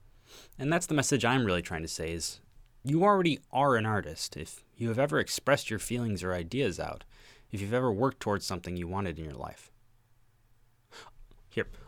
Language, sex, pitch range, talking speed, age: English, male, 95-125 Hz, 185 wpm, 20-39